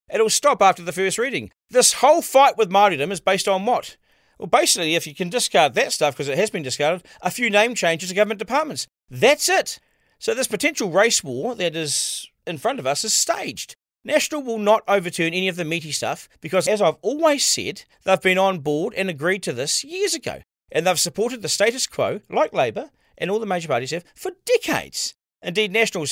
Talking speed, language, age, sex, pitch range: 210 wpm, English, 40-59, male, 175-245 Hz